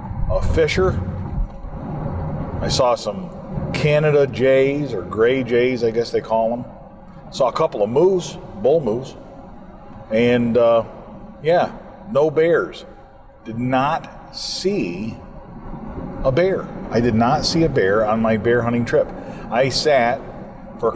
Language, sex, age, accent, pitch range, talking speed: English, male, 40-59, American, 110-140 Hz, 135 wpm